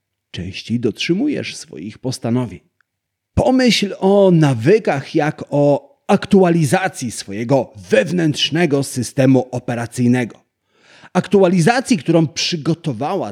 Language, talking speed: Polish, 75 wpm